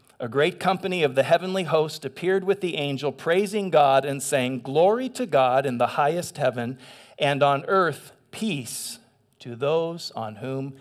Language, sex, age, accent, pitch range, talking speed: English, male, 40-59, American, 125-175 Hz, 165 wpm